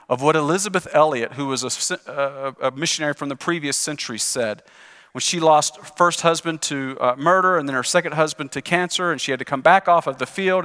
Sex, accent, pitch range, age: male, American, 130-175 Hz, 40-59